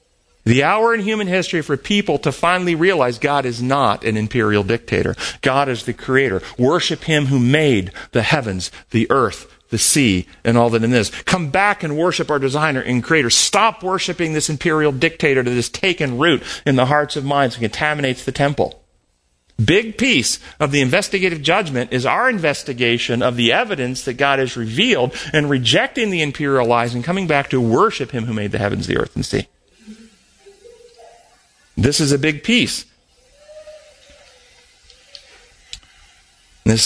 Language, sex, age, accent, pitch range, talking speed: English, male, 40-59, American, 130-190 Hz, 170 wpm